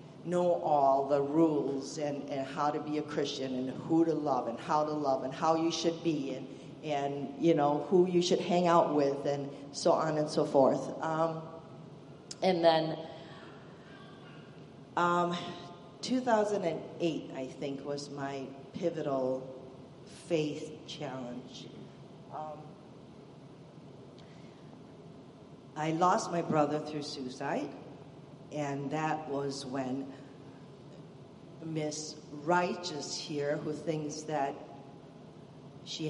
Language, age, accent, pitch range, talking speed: Polish, 50-69, American, 140-165 Hz, 115 wpm